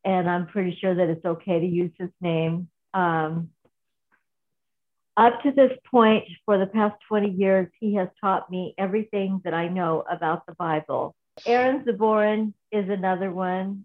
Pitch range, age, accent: 175-215 Hz, 60-79, American